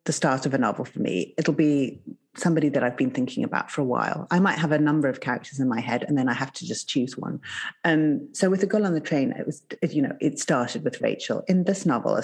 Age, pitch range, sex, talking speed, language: 40-59, 135-175 Hz, female, 285 wpm, English